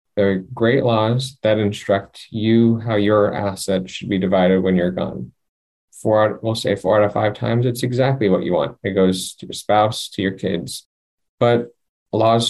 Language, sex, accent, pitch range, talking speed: English, male, American, 100-115 Hz, 185 wpm